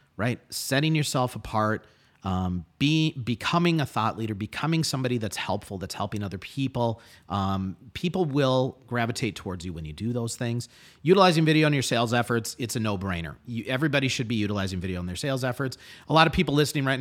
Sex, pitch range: male, 105-145 Hz